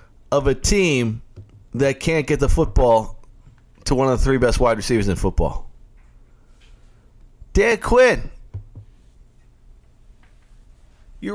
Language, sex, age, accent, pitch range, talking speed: English, male, 30-49, American, 95-125 Hz, 110 wpm